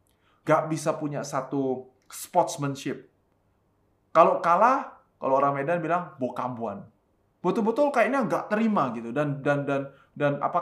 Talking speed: 125 wpm